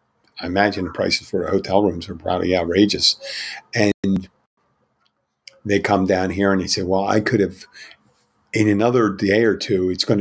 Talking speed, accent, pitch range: 175 wpm, American, 95-110 Hz